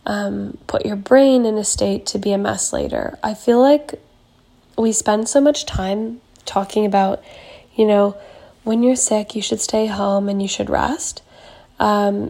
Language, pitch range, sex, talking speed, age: English, 200-235 Hz, female, 175 wpm, 10-29